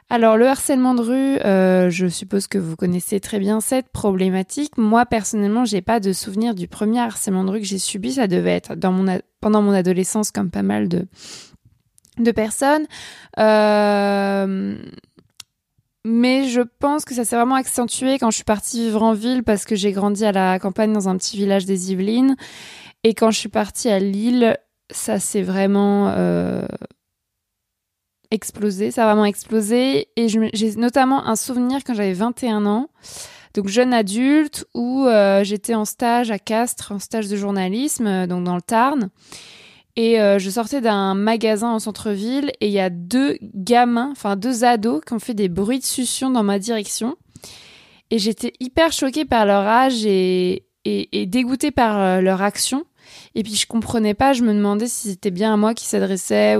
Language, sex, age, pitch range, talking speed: French, female, 20-39, 195-240 Hz, 185 wpm